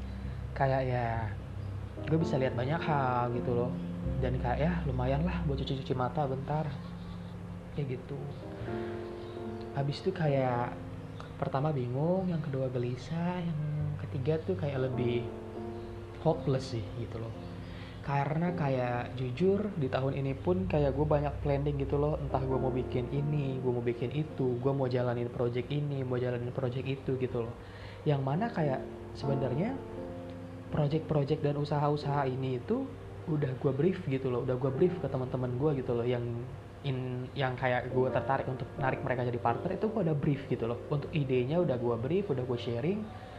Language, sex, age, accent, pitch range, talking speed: Indonesian, male, 20-39, native, 115-145 Hz, 165 wpm